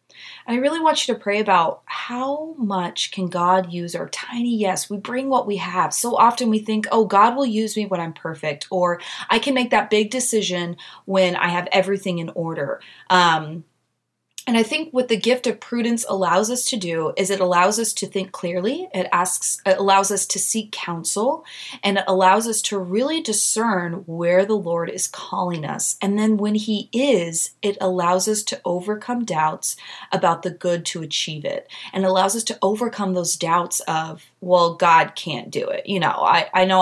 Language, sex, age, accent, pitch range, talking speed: English, female, 20-39, American, 170-220 Hz, 200 wpm